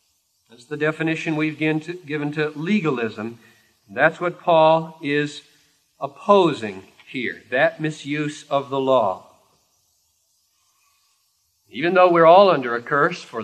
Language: English